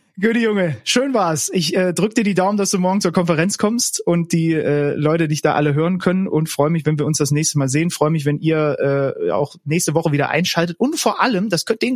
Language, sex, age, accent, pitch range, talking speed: German, male, 30-49, German, 140-180 Hz, 245 wpm